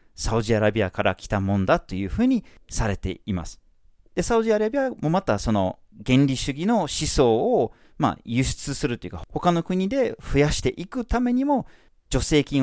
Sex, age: male, 40-59